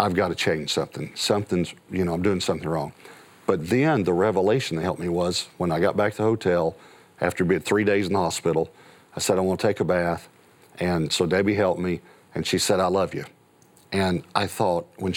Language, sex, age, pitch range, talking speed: English, male, 50-69, 75-105 Hz, 220 wpm